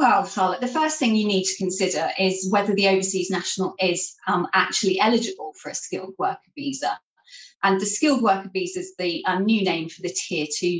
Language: English